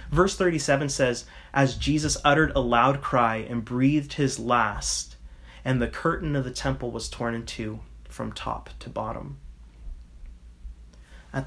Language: English